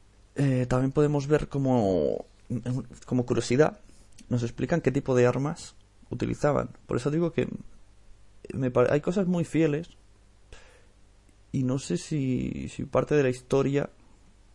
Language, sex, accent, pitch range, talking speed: Spanish, male, Spanish, 100-140 Hz, 135 wpm